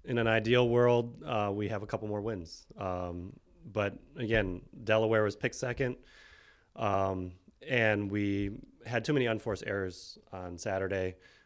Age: 30-49